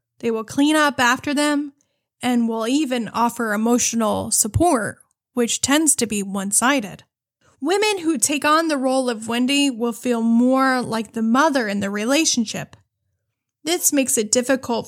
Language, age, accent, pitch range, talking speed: English, 10-29, American, 215-265 Hz, 155 wpm